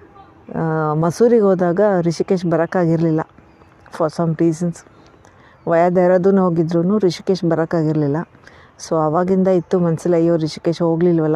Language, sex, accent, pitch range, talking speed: Kannada, female, native, 160-185 Hz, 95 wpm